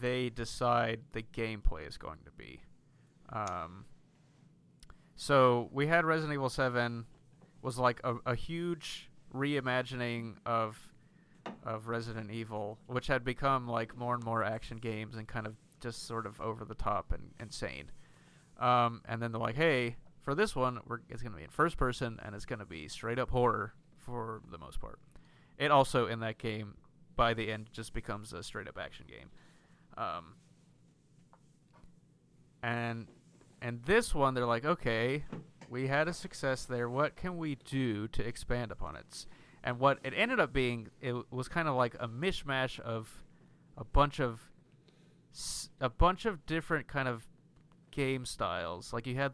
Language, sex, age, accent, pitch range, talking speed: English, male, 30-49, American, 115-140 Hz, 170 wpm